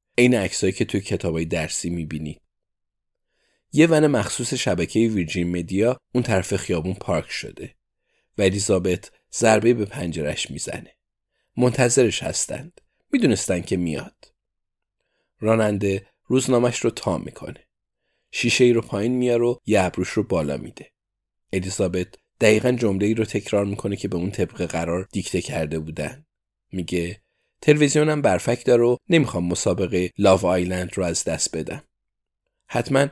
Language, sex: Persian, male